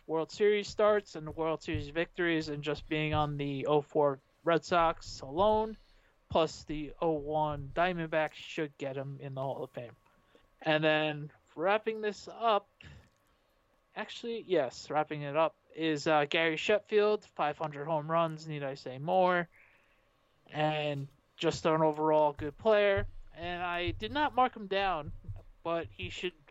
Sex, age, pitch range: male, 20-39, 145-170 Hz